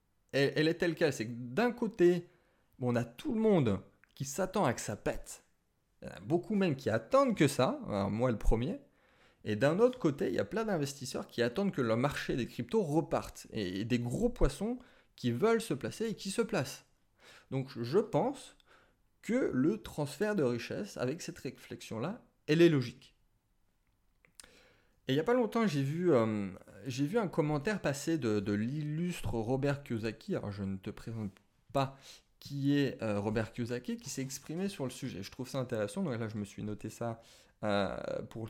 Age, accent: 30-49, French